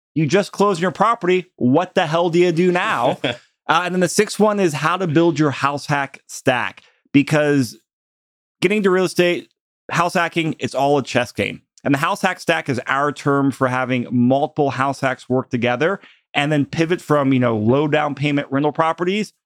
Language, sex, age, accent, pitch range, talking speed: English, male, 30-49, American, 130-170 Hz, 195 wpm